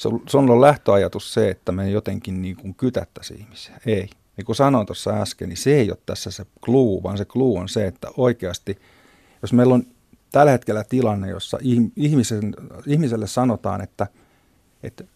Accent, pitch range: native, 95-120 Hz